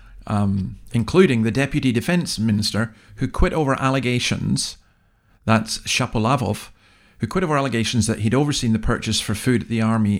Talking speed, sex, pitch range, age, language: 155 wpm, male, 110-140 Hz, 50-69, English